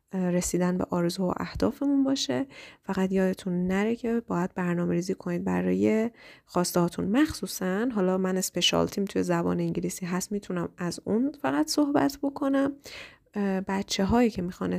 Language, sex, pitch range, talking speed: Persian, female, 180-225 Hz, 140 wpm